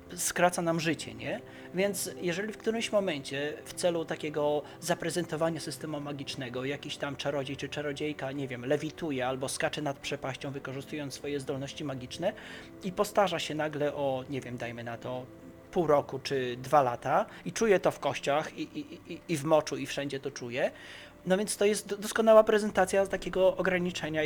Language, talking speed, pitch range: Polish, 165 wpm, 145-195 Hz